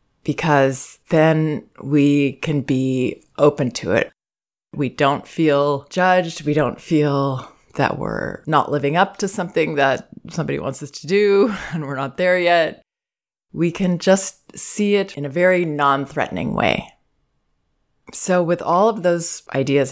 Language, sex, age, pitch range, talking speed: English, female, 20-39, 140-170 Hz, 150 wpm